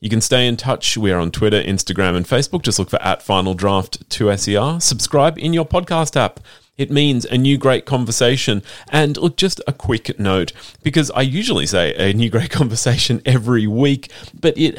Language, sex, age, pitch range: English, male, 30-49, 100-140 Hz